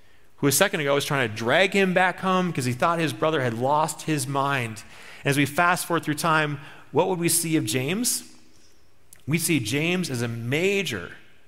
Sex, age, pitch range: male, 30-49, 110-150 Hz